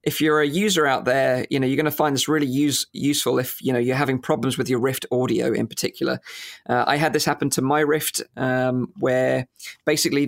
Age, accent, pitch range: 20-39, British, 125-150 Hz